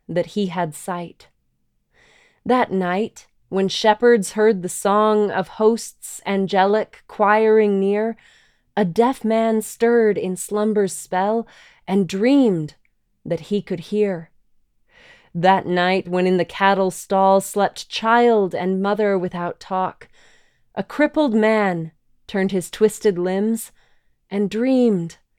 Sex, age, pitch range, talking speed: female, 20-39, 185-225 Hz, 120 wpm